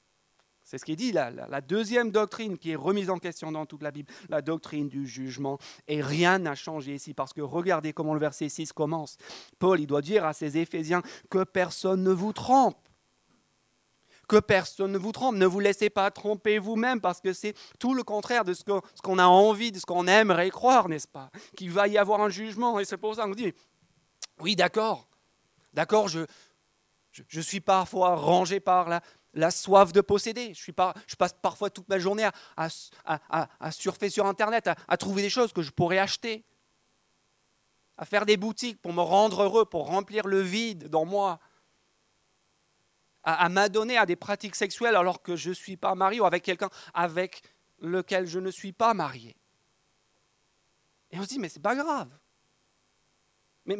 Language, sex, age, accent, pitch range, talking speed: French, male, 30-49, French, 165-210 Hz, 195 wpm